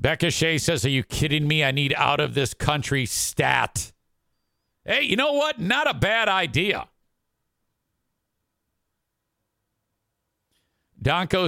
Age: 50-69